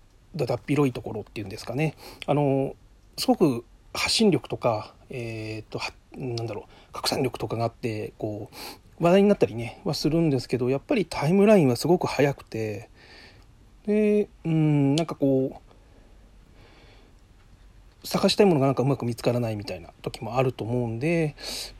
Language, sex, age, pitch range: Japanese, male, 40-59, 115-180 Hz